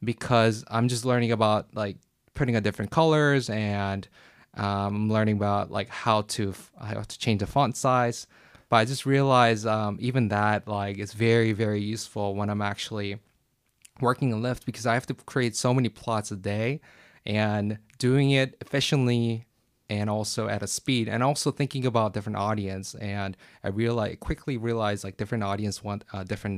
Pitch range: 100-120 Hz